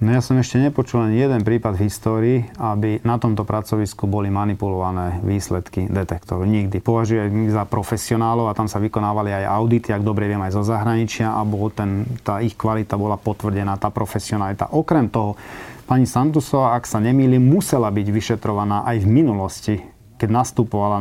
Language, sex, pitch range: Slovak, male, 105-130 Hz